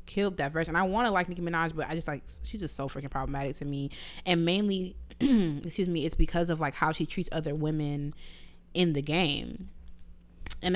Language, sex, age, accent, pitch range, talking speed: English, female, 20-39, American, 160-190 Hz, 205 wpm